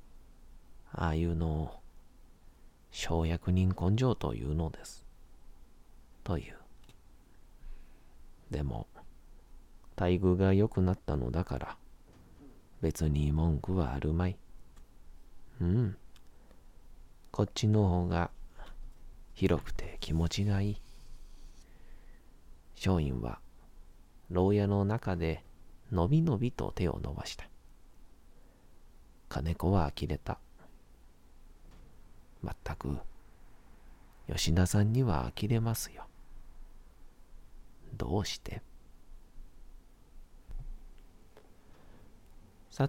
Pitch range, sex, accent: 80-105 Hz, male, native